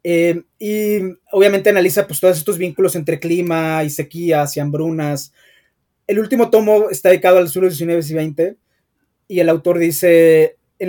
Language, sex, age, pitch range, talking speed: Spanish, male, 20-39, 150-180 Hz, 160 wpm